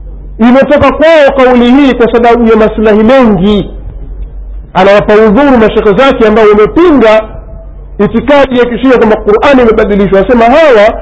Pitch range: 200-255 Hz